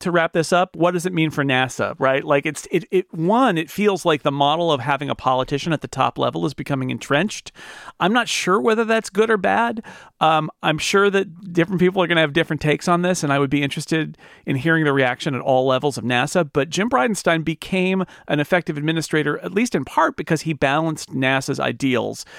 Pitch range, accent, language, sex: 135-170 Hz, American, English, male